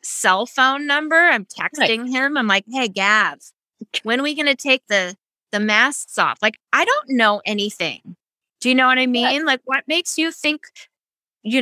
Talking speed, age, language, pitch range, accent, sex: 185 wpm, 20-39, English, 175-235 Hz, American, female